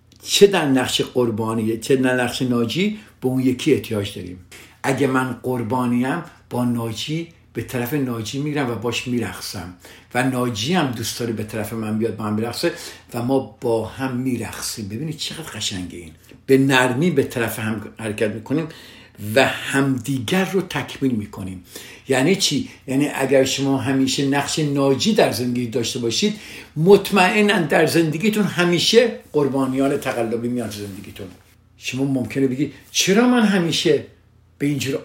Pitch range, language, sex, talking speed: 115-150 Hz, Persian, male, 145 wpm